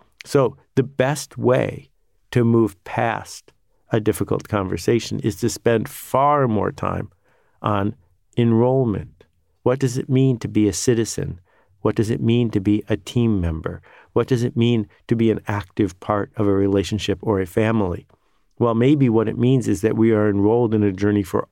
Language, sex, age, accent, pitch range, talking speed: English, male, 50-69, American, 100-120 Hz, 180 wpm